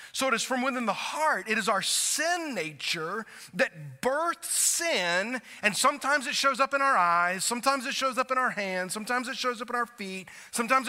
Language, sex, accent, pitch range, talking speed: English, male, American, 200-270 Hz, 210 wpm